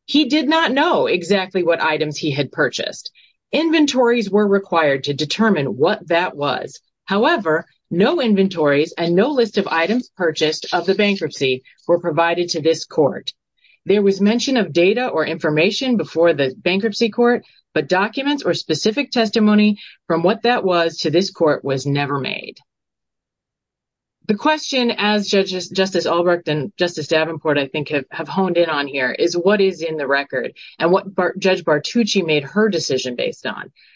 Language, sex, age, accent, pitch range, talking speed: English, female, 30-49, American, 155-210 Hz, 165 wpm